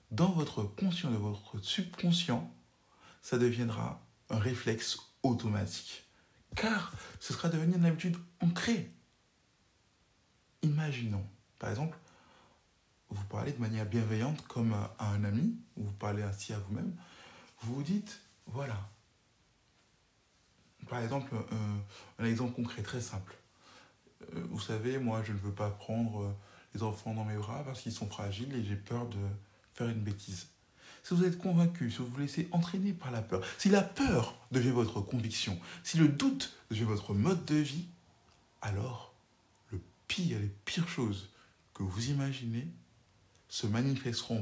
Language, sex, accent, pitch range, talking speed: French, male, French, 105-145 Hz, 145 wpm